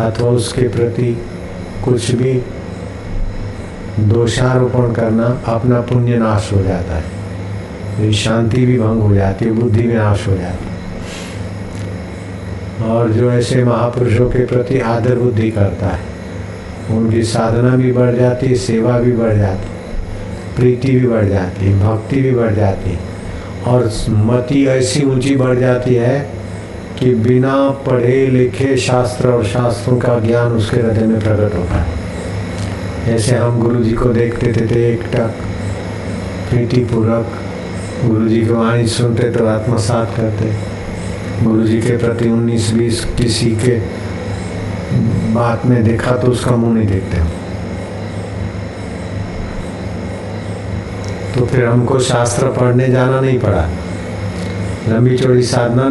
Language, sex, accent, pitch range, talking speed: Hindi, male, native, 95-120 Hz, 135 wpm